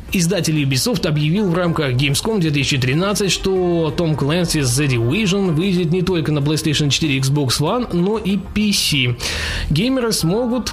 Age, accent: 20-39, native